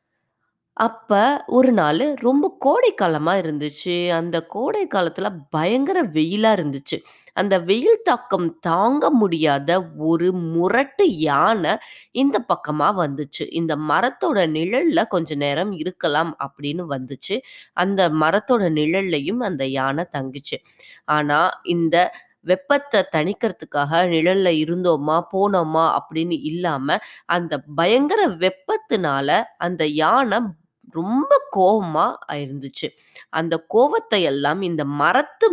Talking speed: 100 wpm